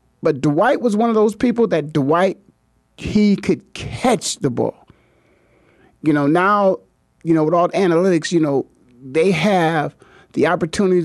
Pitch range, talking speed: 170-235 Hz, 155 wpm